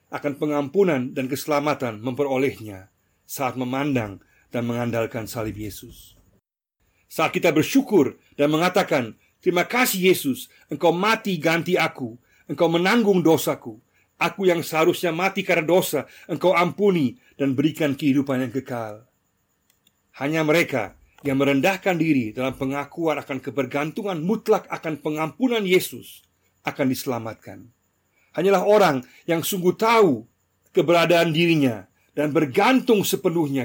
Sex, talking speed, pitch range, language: male, 115 wpm, 115-165 Hz, Indonesian